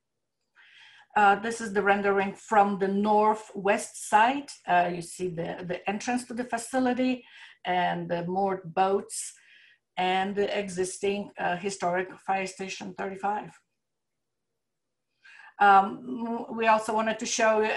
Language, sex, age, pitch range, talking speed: English, female, 50-69, 190-225 Hz, 125 wpm